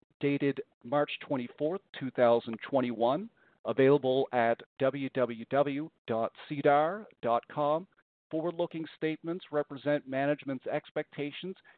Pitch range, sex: 130-160 Hz, male